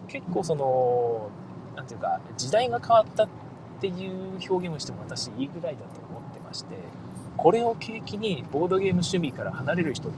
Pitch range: 150-185 Hz